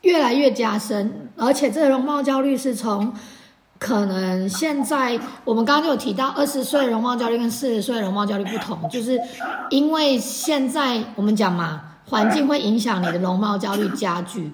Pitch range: 205-275 Hz